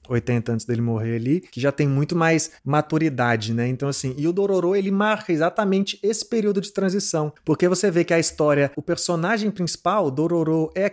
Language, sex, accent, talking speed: Portuguese, male, Brazilian, 200 wpm